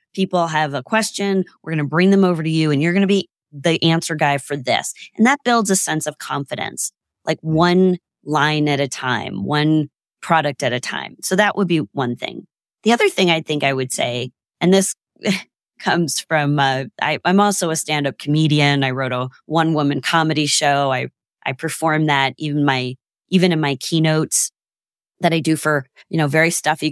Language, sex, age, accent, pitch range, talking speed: English, female, 30-49, American, 145-185 Hz, 200 wpm